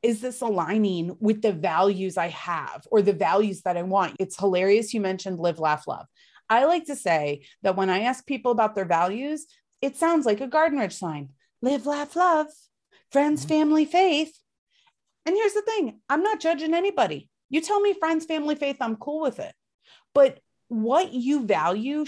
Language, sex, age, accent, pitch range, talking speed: English, female, 30-49, American, 195-285 Hz, 185 wpm